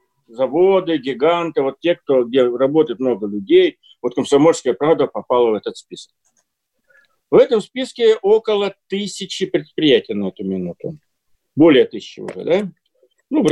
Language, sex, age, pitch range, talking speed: Russian, male, 50-69, 160-235 Hz, 135 wpm